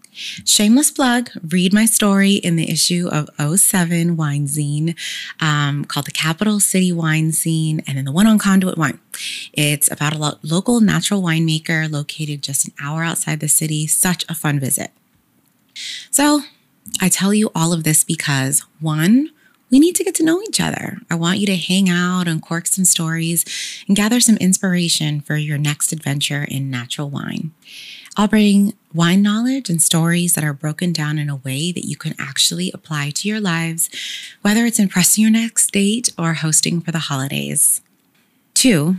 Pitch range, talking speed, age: 155-205 Hz, 175 wpm, 20-39